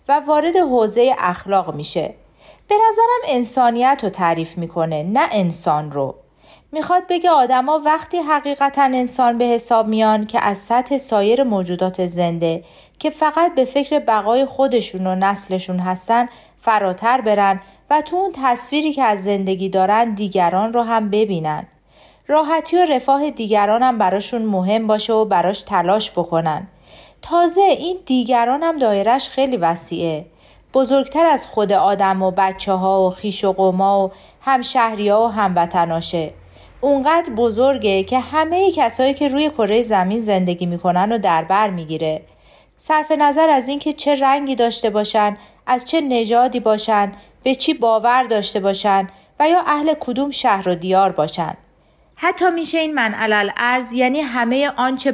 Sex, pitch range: female, 195-275 Hz